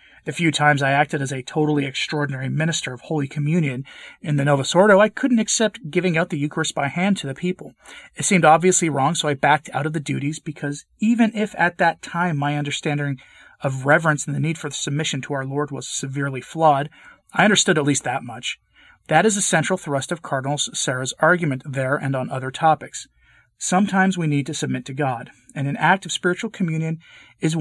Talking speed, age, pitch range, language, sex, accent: 205 wpm, 30-49, 135-165 Hz, English, male, American